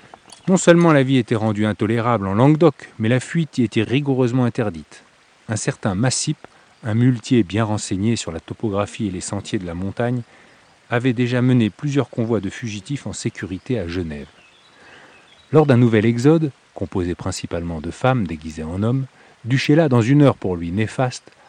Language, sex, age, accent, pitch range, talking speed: French, male, 40-59, French, 100-125 Hz, 170 wpm